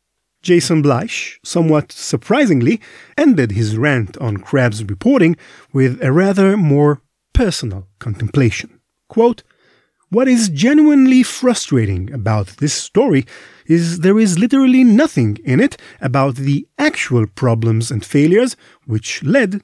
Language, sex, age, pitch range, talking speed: English, male, 40-59, 115-170 Hz, 120 wpm